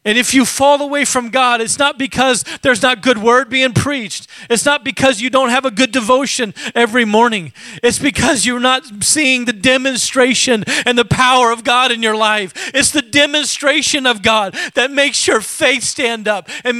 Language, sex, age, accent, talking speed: English, male, 40-59, American, 195 wpm